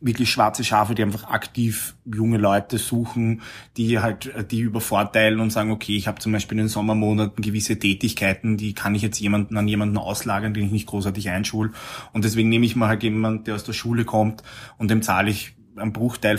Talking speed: 205 wpm